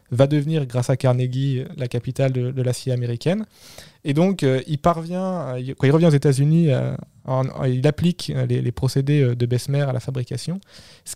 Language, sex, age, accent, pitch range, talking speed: French, male, 20-39, French, 125-150 Hz, 195 wpm